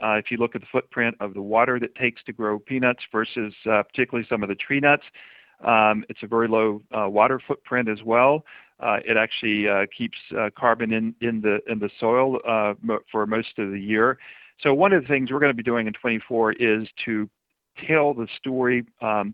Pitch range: 105-125 Hz